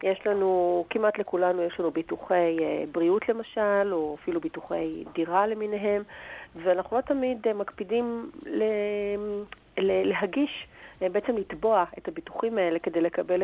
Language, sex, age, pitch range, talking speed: Hebrew, female, 40-59, 175-225 Hz, 120 wpm